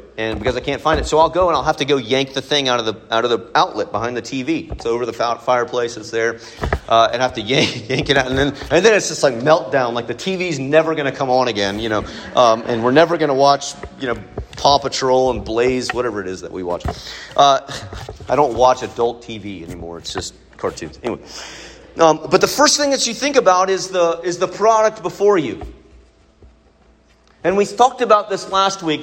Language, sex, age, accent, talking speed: English, male, 40-59, American, 230 wpm